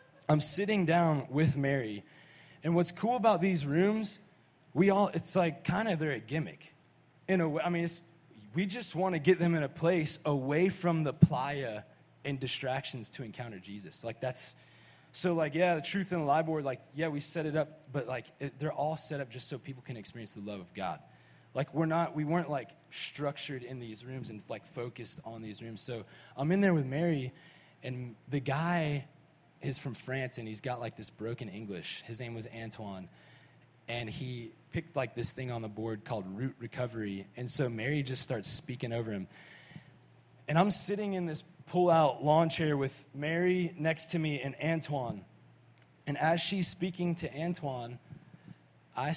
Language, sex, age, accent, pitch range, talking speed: English, male, 20-39, American, 125-165 Hz, 190 wpm